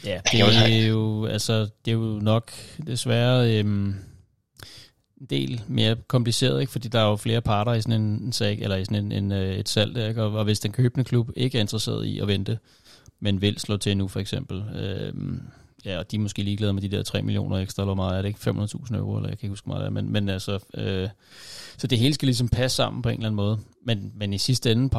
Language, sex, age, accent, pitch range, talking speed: Danish, male, 30-49, native, 100-125 Hz, 240 wpm